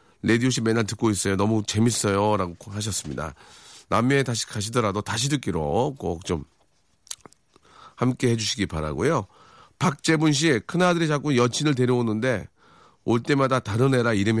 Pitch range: 100-150 Hz